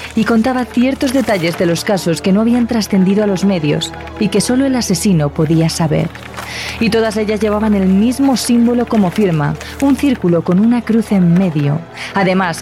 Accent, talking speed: Spanish, 180 wpm